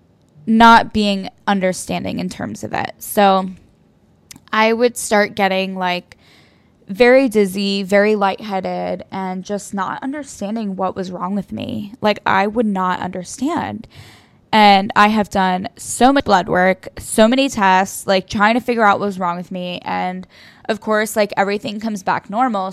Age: 10-29